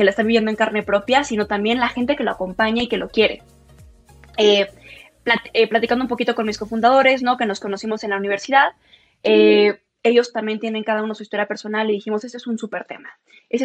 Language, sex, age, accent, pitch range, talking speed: Spanish, female, 20-39, Mexican, 215-250 Hz, 225 wpm